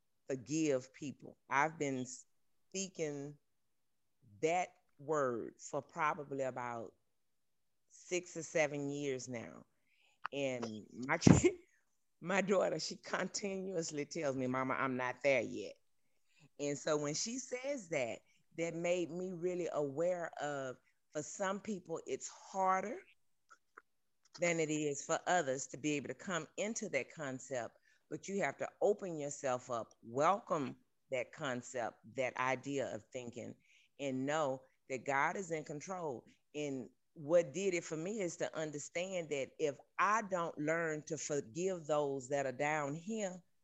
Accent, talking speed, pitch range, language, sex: American, 140 wpm, 135-170 Hz, English, female